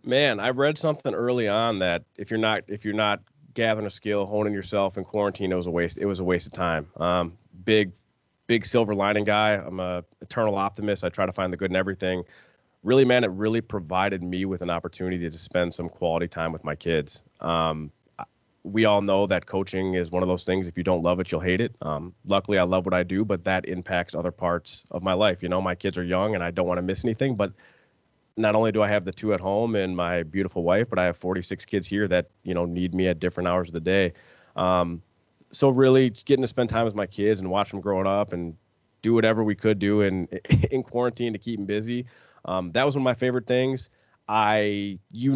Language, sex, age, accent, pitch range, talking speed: English, male, 30-49, American, 90-110 Hz, 240 wpm